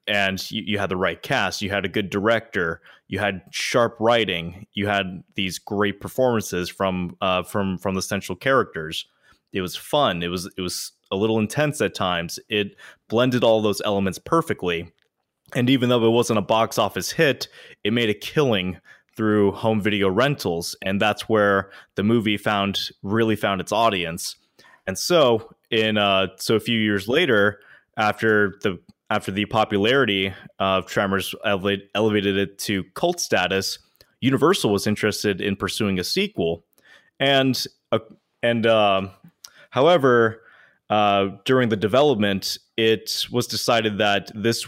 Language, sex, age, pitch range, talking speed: English, male, 20-39, 100-115 Hz, 155 wpm